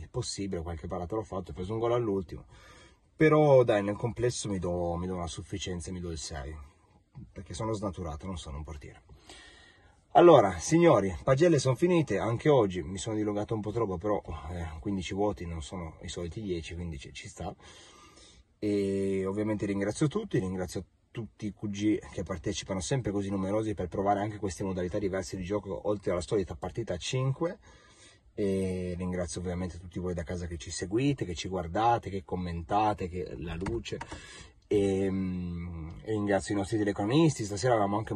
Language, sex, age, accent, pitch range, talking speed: Italian, male, 30-49, native, 90-110 Hz, 170 wpm